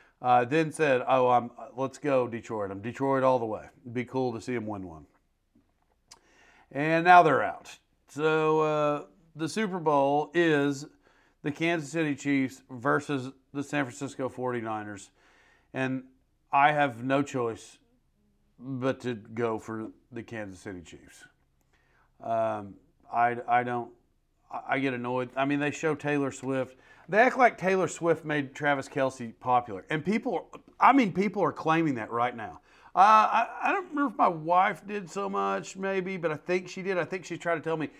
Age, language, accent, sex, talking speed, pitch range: 40-59, English, American, male, 170 wpm, 125-170 Hz